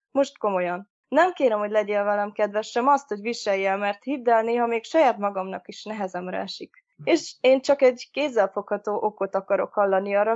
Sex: female